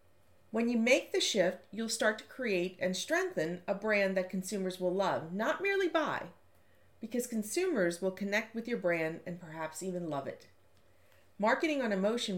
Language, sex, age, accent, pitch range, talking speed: English, female, 40-59, American, 170-220 Hz, 170 wpm